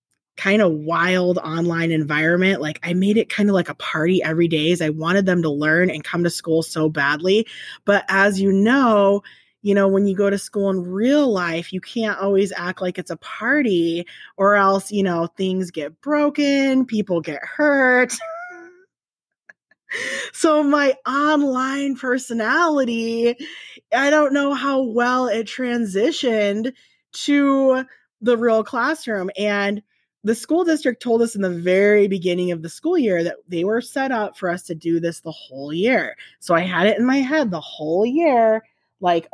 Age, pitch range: 20-39, 175-245 Hz